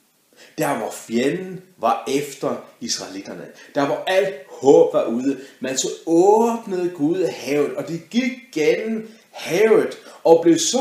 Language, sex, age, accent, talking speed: Danish, male, 30-49, native, 145 wpm